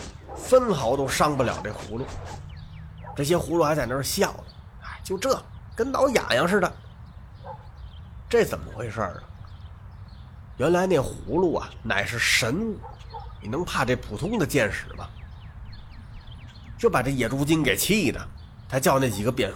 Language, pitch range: Chinese, 100-165 Hz